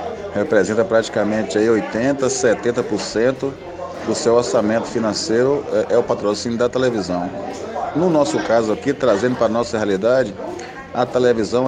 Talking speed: 125 wpm